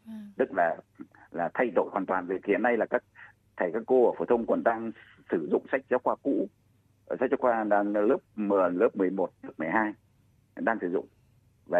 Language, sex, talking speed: Vietnamese, male, 210 wpm